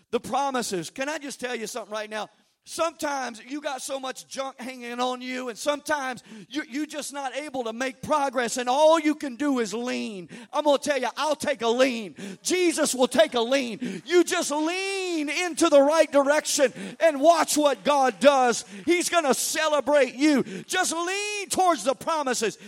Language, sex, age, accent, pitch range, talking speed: English, male, 50-69, American, 240-330 Hz, 185 wpm